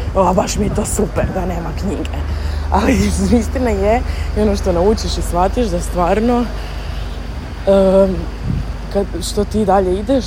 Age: 20-39